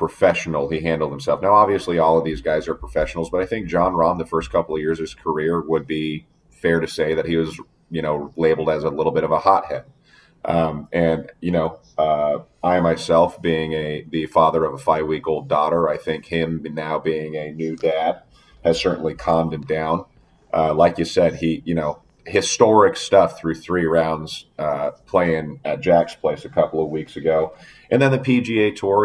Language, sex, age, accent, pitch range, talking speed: English, male, 30-49, American, 80-85 Hz, 200 wpm